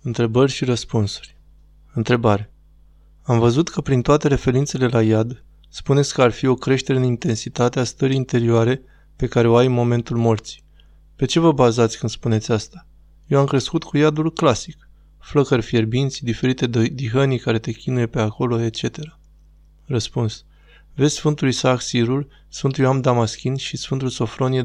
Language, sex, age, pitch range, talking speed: Romanian, male, 20-39, 115-135 Hz, 155 wpm